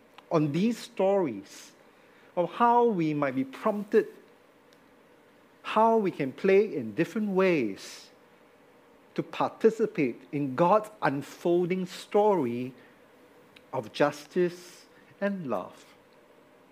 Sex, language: male, English